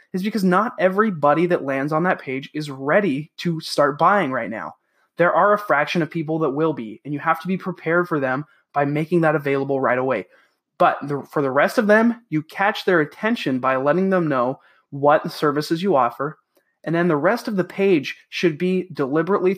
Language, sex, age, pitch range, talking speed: English, male, 20-39, 145-185 Hz, 205 wpm